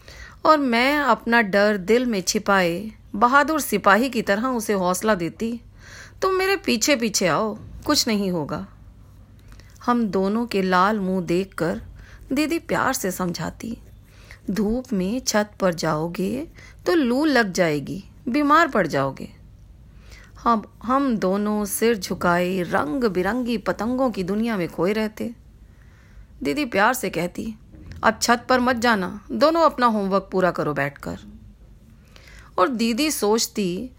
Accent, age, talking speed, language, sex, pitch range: native, 30-49, 135 wpm, Hindi, female, 185-245 Hz